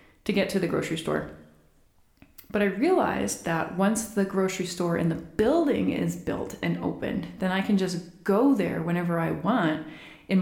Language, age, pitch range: English, 20-39, 180-235 Hz